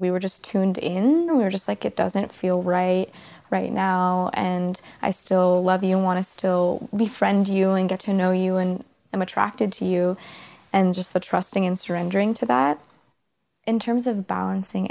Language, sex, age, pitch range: English, female, 20-39, 180-200 Hz